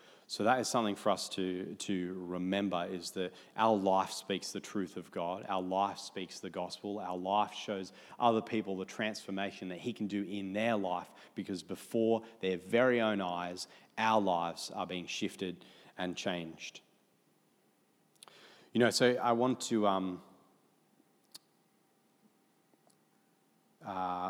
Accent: Australian